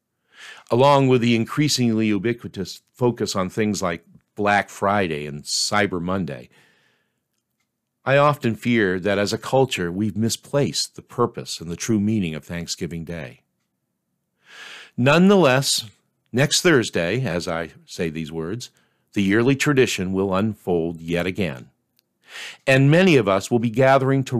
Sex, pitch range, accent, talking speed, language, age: male, 95-130 Hz, American, 135 wpm, English, 50-69